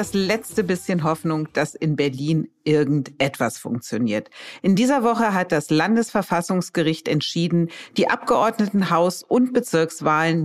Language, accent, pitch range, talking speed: German, German, 150-195 Hz, 115 wpm